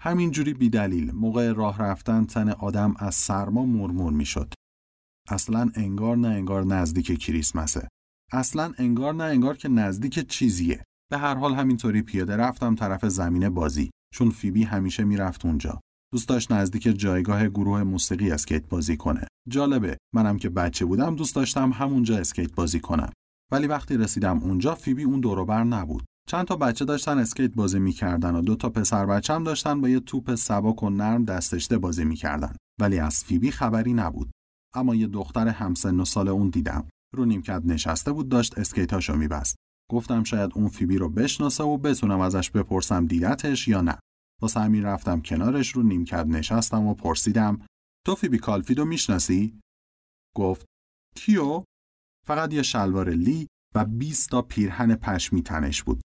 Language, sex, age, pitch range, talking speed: Persian, male, 30-49, 85-120 Hz, 155 wpm